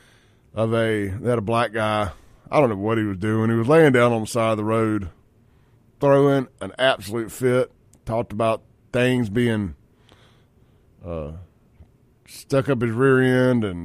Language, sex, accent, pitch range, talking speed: English, male, American, 105-140 Hz, 165 wpm